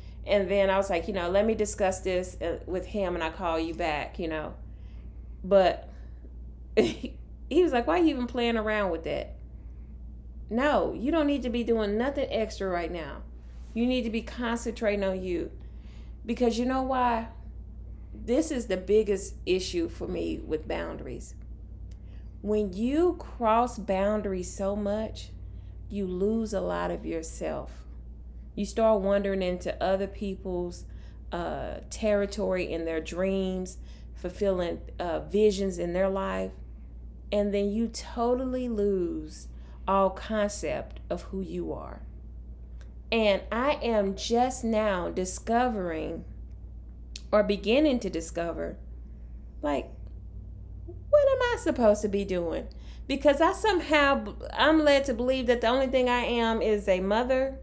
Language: English